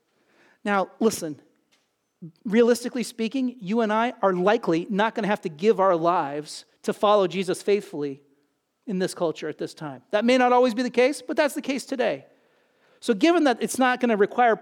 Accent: American